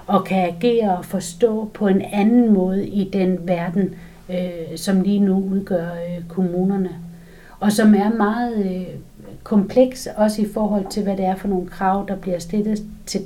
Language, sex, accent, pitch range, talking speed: Danish, female, native, 185-215 Hz, 175 wpm